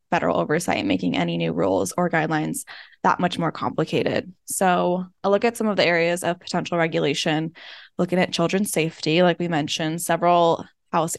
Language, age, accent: English, 10-29, American